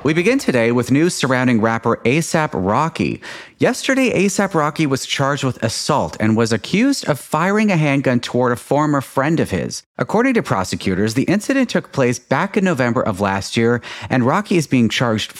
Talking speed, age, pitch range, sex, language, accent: 185 wpm, 30-49, 105-145 Hz, male, English, American